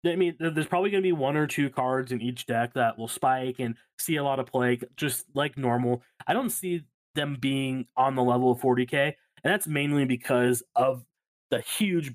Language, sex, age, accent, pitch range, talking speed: English, male, 20-39, American, 125-150 Hz, 210 wpm